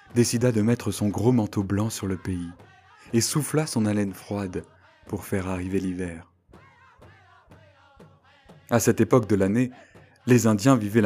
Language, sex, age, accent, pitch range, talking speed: French, male, 20-39, French, 100-120 Hz, 145 wpm